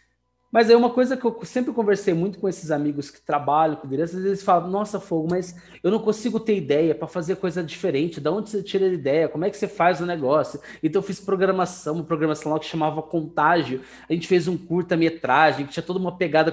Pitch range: 155-195 Hz